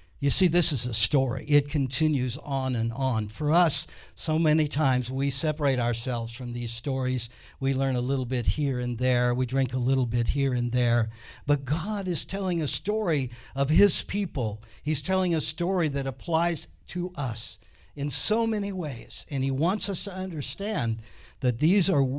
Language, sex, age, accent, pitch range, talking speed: English, male, 60-79, American, 115-170 Hz, 185 wpm